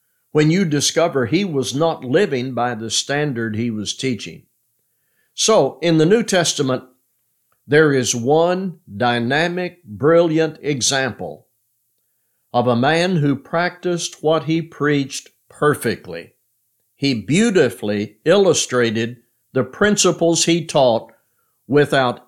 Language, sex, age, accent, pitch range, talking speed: English, male, 60-79, American, 120-160 Hz, 110 wpm